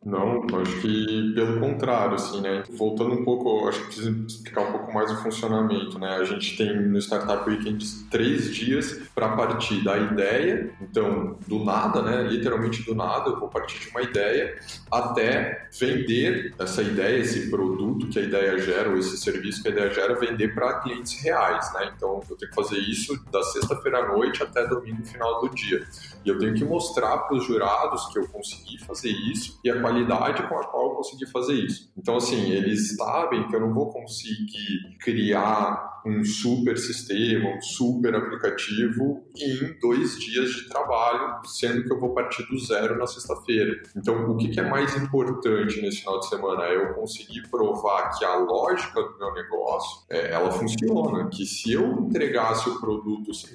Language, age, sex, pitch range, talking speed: Portuguese, 20-39, male, 105-130 Hz, 185 wpm